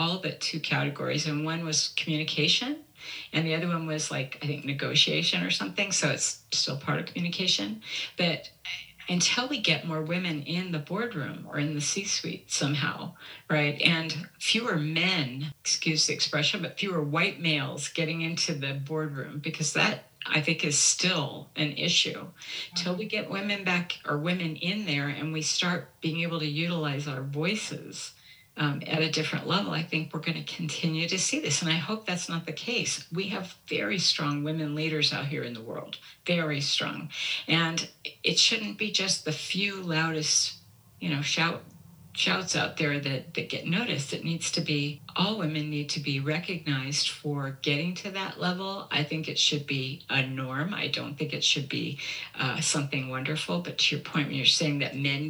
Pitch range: 145-170 Hz